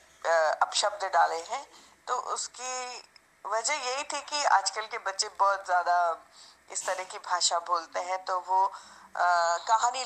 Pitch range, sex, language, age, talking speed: 170-215 Hz, female, English, 20-39, 150 wpm